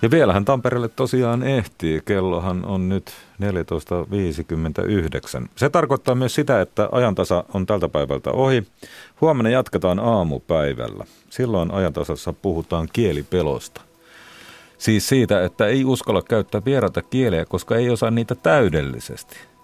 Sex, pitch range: male, 80-115 Hz